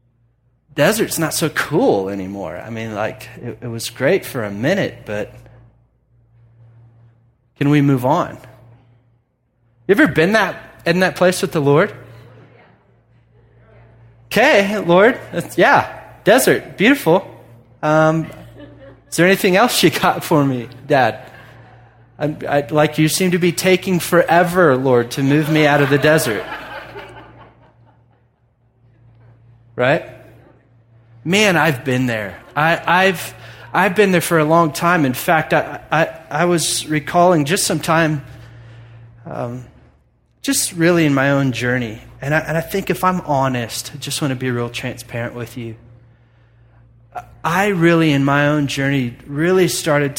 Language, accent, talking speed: English, American, 140 wpm